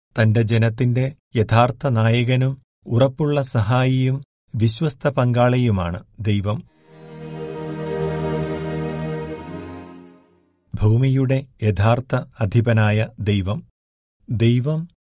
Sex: male